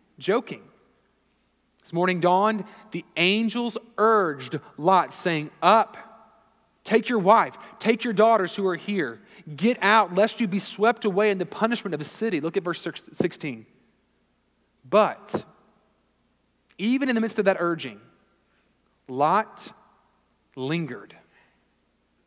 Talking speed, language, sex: 125 wpm, English, male